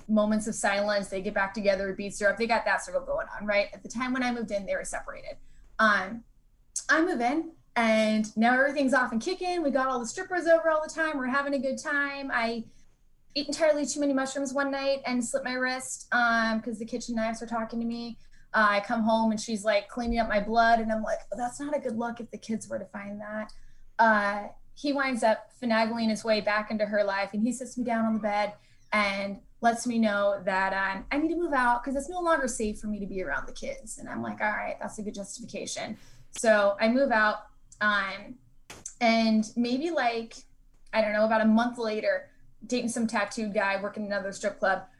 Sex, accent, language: female, American, English